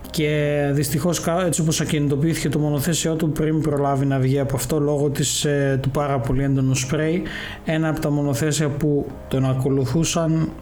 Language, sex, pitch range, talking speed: Greek, male, 140-165 Hz, 160 wpm